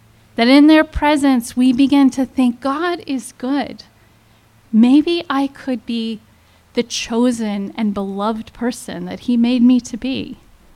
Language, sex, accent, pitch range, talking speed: English, female, American, 190-250 Hz, 145 wpm